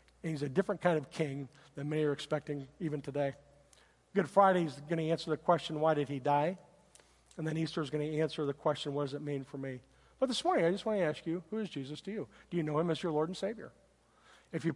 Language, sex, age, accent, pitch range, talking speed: English, male, 50-69, American, 145-180 Hz, 260 wpm